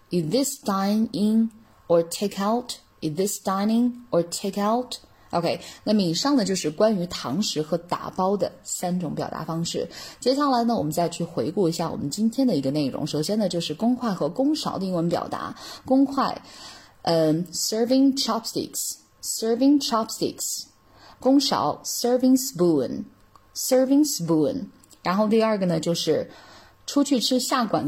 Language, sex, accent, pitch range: Chinese, female, native, 175-245 Hz